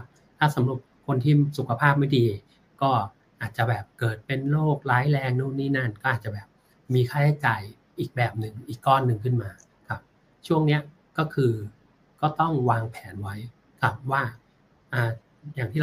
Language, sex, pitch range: Thai, male, 115-140 Hz